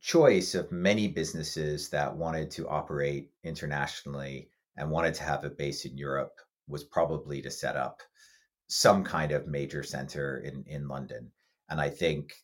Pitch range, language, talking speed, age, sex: 70-80 Hz, English, 160 wpm, 50-69, male